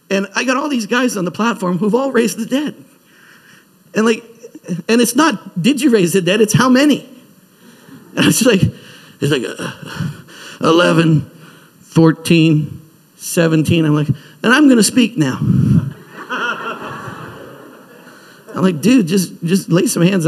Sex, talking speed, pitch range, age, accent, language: male, 155 wpm, 150-200 Hz, 50-69, American, English